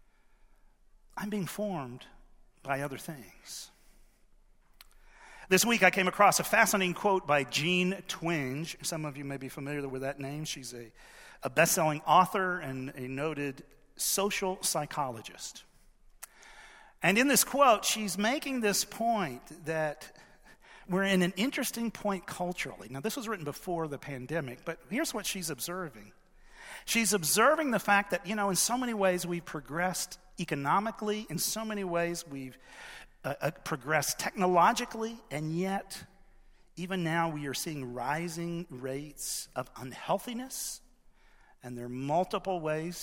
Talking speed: 140 wpm